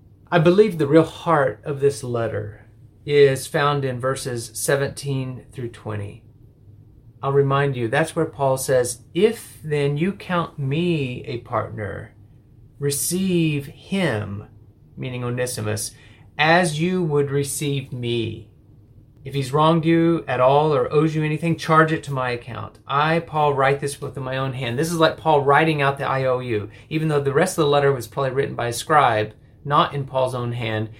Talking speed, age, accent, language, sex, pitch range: 170 wpm, 30-49, American, English, male, 120-150 Hz